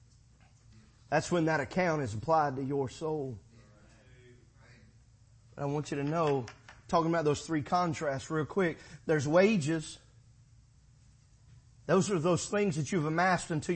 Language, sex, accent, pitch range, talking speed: English, male, American, 120-200 Hz, 135 wpm